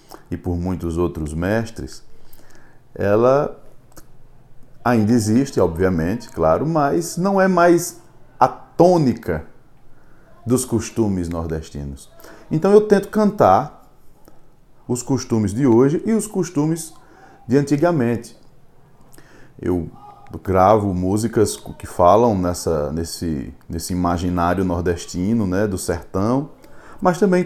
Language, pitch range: Portuguese, 95-145 Hz